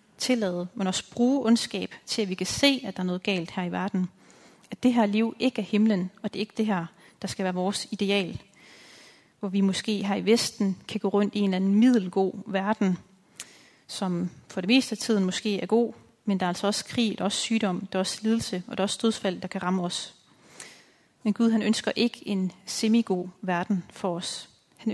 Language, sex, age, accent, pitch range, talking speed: Danish, female, 30-49, native, 190-220 Hz, 225 wpm